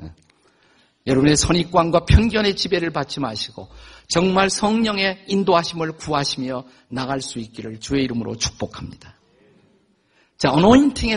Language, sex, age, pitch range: Korean, male, 50-69, 120-170 Hz